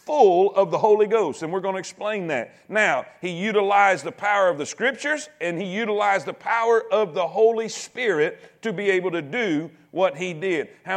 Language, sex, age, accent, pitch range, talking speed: English, male, 40-59, American, 200-275 Hz, 200 wpm